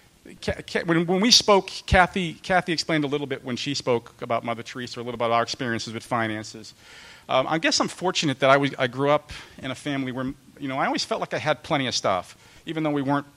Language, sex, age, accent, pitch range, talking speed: English, male, 40-59, American, 130-175 Hz, 235 wpm